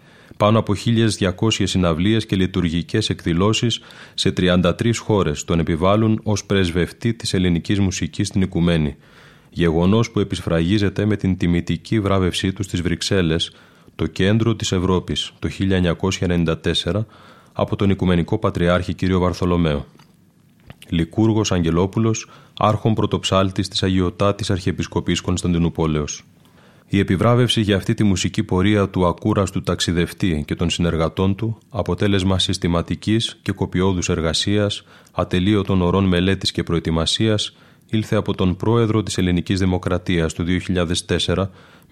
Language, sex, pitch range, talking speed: Greek, male, 85-105 Hz, 120 wpm